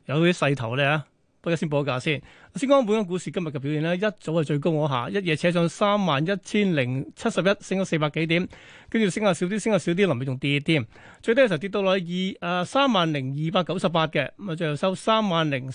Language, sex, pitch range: Chinese, male, 145-195 Hz